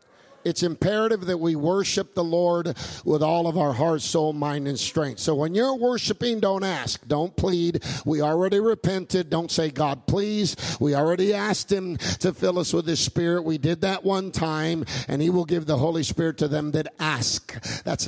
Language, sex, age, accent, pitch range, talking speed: English, male, 50-69, American, 150-200 Hz, 195 wpm